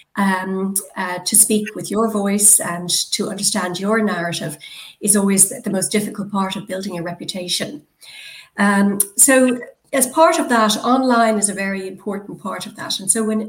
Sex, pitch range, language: female, 200-235 Hz, English